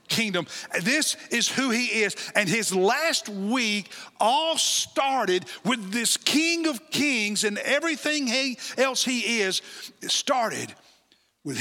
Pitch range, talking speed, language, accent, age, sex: 190-255 Hz, 130 wpm, English, American, 60-79, male